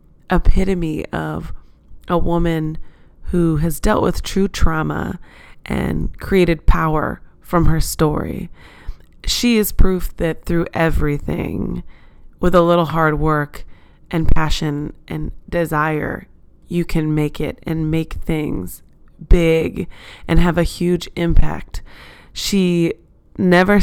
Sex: female